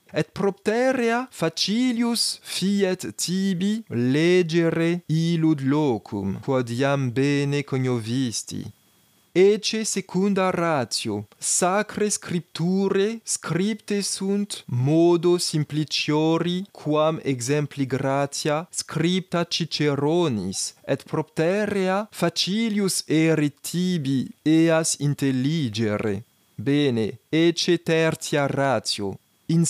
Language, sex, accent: Greek, male, French